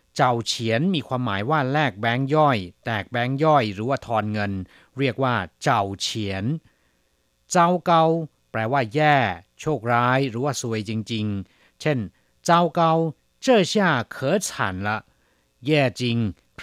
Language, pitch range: Chinese, 110-150 Hz